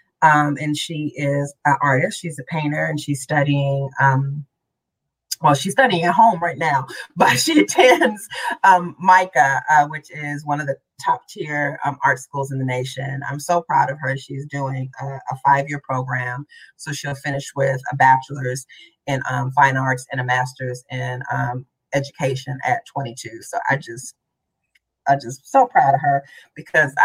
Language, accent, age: English, American, 30-49